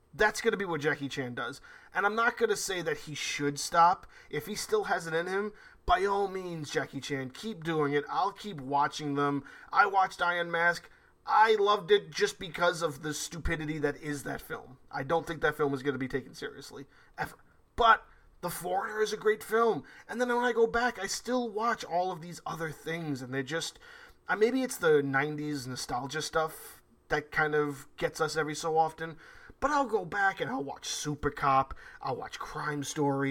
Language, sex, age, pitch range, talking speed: English, male, 20-39, 145-210 Hz, 200 wpm